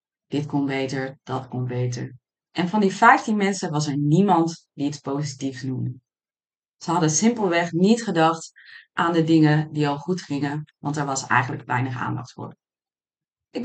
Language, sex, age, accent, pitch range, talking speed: Dutch, female, 30-49, Dutch, 140-175 Hz, 165 wpm